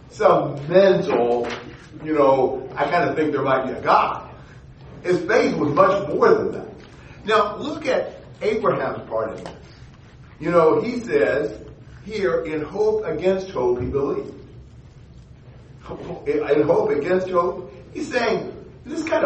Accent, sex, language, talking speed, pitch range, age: American, male, English, 145 wpm, 140-220 Hz, 40-59